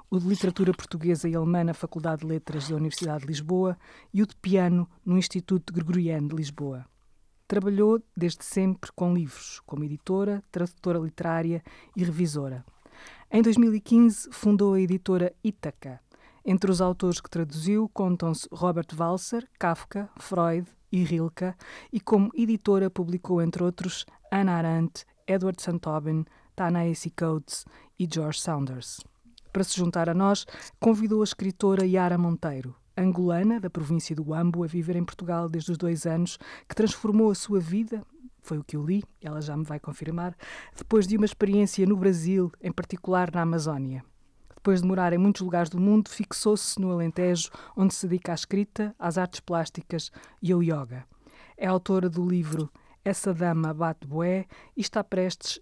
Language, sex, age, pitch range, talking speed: Portuguese, female, 20-39, 165-195 Hz, 160 wpm